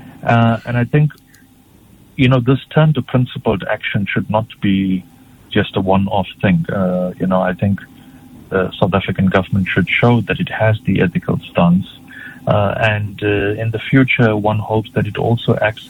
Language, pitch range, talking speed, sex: English, 95-125 Hz, 175 wpm, male